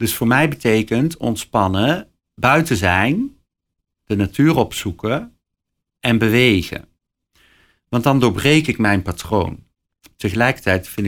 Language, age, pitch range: Dutch, 50-69, 90-120 Hz